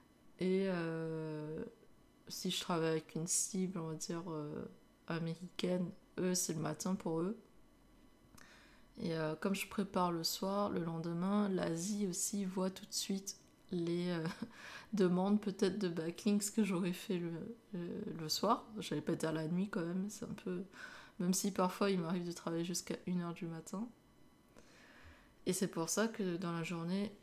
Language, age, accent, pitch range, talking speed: French, 20-39, French, 165-195 Hz, 170 wpm